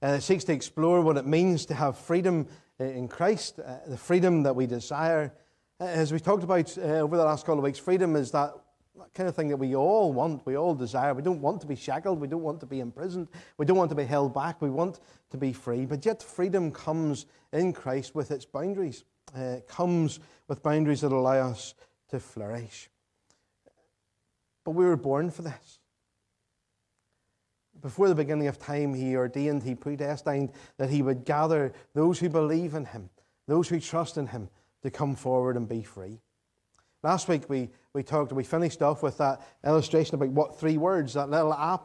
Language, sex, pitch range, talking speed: English, male, 130-165 Hz, 200 wpm